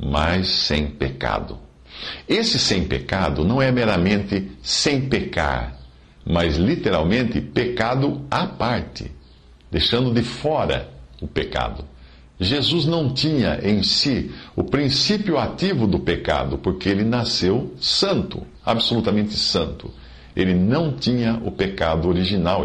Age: 50-69